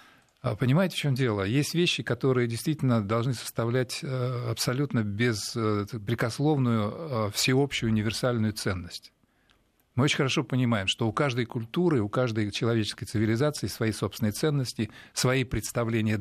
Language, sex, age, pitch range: Russian, male, 40-59, 105-135 Hz